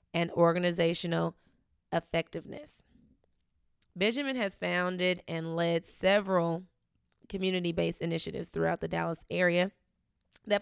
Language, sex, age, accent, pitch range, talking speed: English, female, 20-39, American, 170-220 Hz, 90 wpm